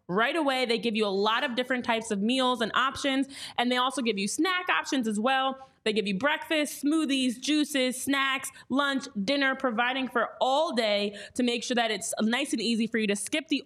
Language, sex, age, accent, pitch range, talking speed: English, female, 20-39, American, 225-280 Hz, 215 wpm